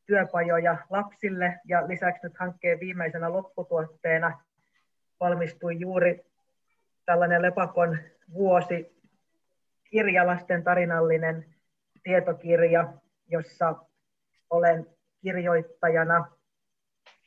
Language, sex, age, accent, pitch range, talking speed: Finnish, female, 30-49, native, 165-180 Hz, 65 wpm